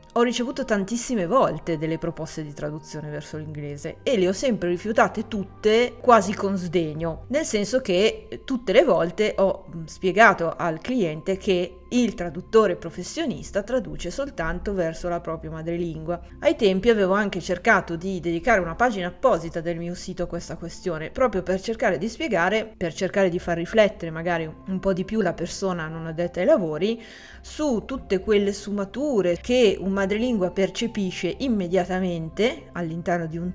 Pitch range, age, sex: 170-215 Hz, 30-49, female